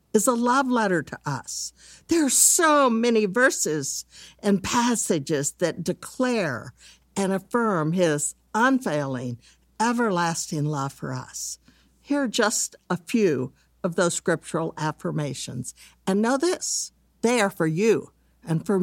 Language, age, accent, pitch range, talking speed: English, 60-79, American, 155-230 Hz, 130 wpm